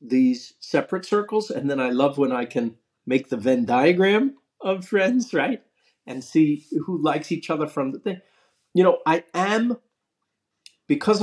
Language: English